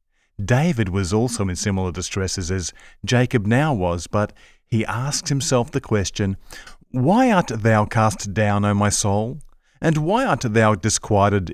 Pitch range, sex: 95-120 Hz, male